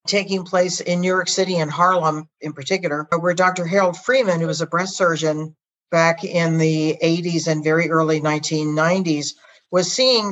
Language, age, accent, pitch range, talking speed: English, 50-69, American, 155-185 Hz, 170 wpm